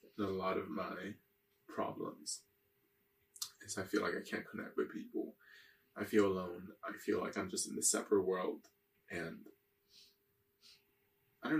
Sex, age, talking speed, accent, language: male, 20-39, 150 wpm, American, English